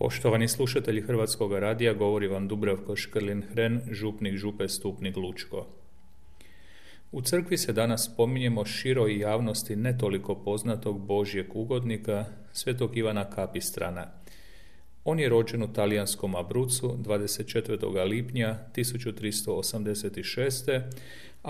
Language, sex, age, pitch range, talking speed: Croatian, male, 40-59, 100-120 Hz, 105 wpm